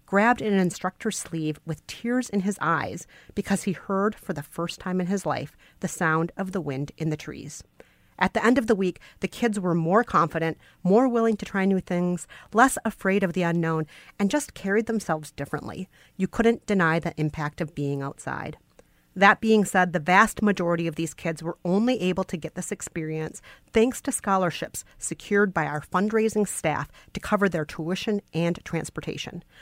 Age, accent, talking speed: 40-59, American, 185 wpm